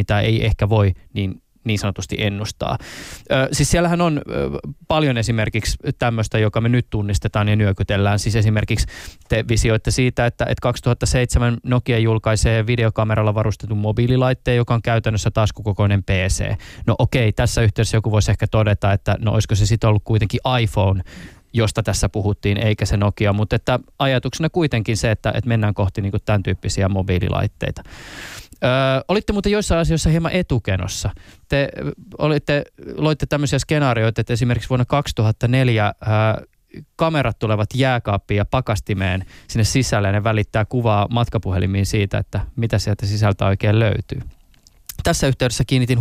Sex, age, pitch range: male, 20-39, 105-125 Hz